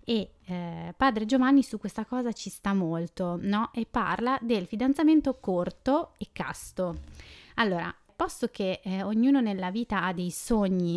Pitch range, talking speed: 185-240 Hz, 155 wpm